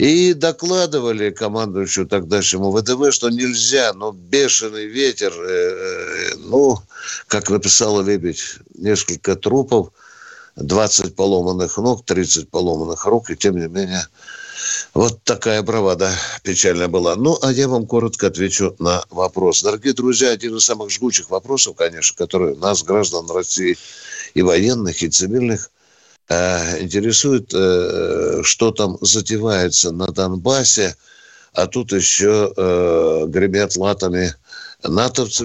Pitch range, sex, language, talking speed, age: 100-160 Hz, male, Russian, 115 wpm, 60-79